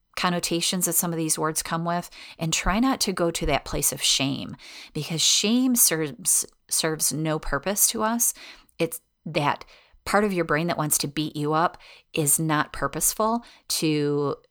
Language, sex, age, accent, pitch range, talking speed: English, female, 30-49, American, 145-180 Hz, 175 wpm